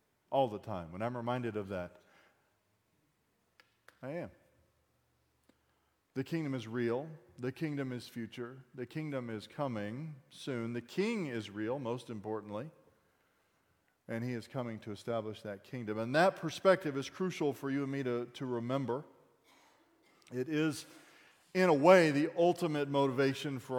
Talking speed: 145 wpm